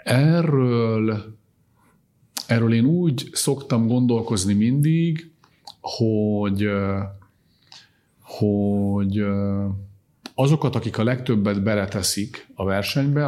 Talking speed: 70 wpm